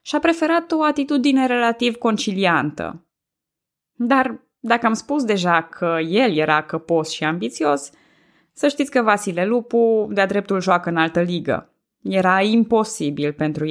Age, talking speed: 20-39, 135 wpm